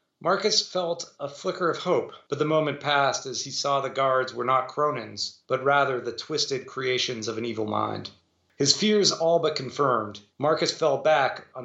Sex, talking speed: male, 185 wpm